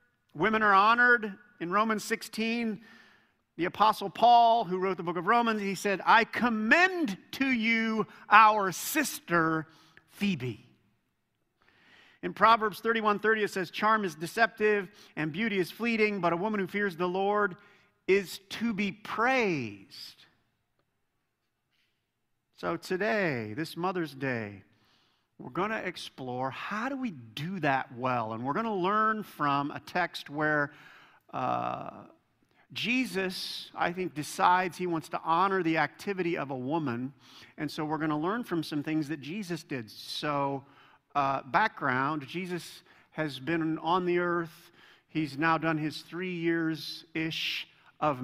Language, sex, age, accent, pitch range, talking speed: English, male, 50-69, American, 150-210 Hz, 140 wpm